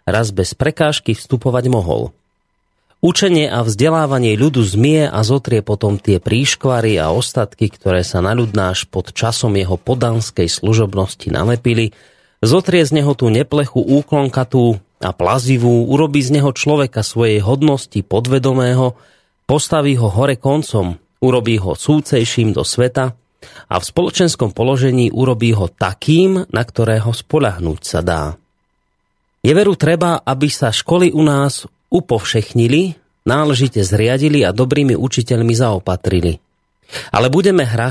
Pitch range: 110-145 Hz